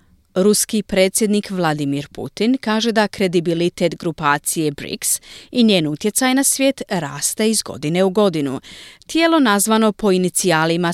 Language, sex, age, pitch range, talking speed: Croatian, female, 40-59, 165-245 Hz, 125 wpm